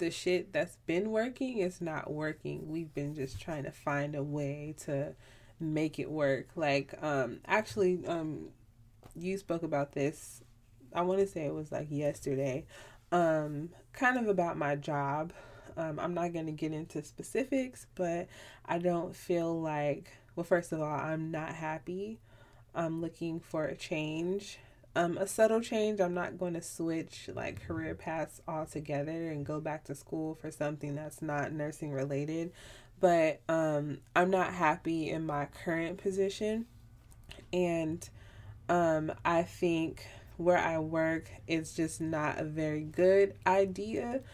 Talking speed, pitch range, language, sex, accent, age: 155 wpm, 145-175 Hz, English, female, American, 20-39